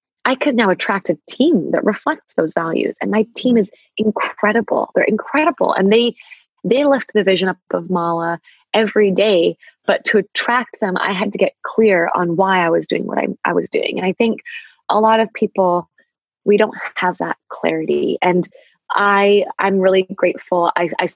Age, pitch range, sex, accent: 20-39, 180-220 Hz, female, American